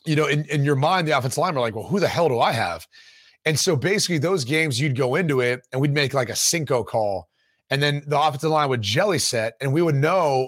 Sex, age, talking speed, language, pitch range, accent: male, 30-49, 265 wpm, English, 130-160 Hz, American